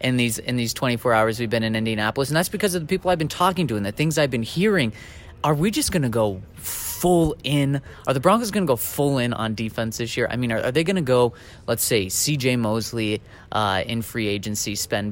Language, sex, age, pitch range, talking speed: English, male, 30-49, 110-145 Hz, 255 wpm